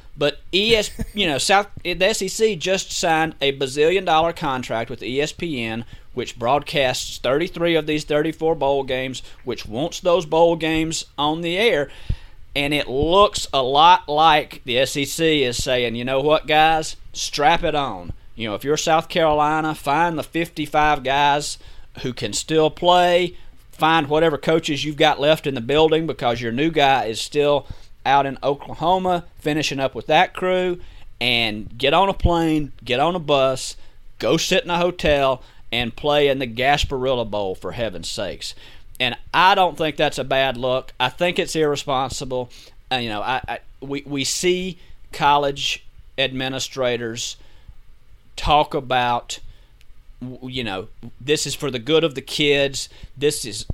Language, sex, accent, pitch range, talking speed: English, male, American, 130-160 Hz, 160 wpm